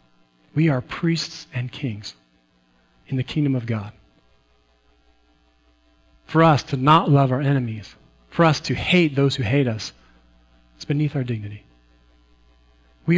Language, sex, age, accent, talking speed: English, male, 40-59, American, 135 wpm